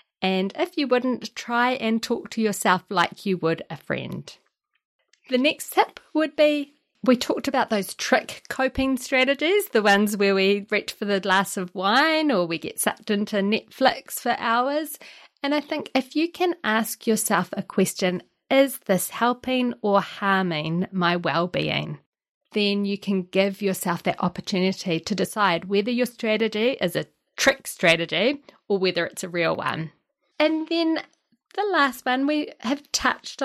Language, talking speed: English, 165 wpm